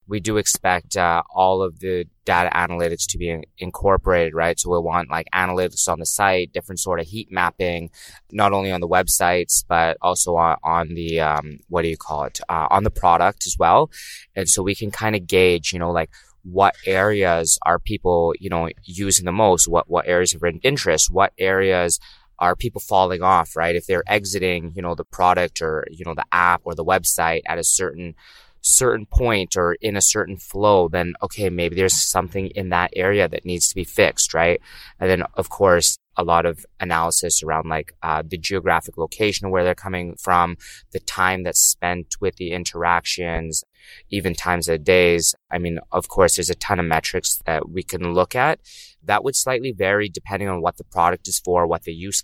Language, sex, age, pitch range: Chinese, male, 20-39, 85-95 Hz